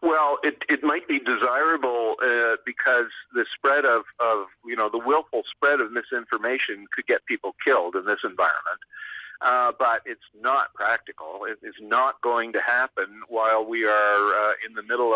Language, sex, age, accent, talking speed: English, male, 50-69, American, 175 wpm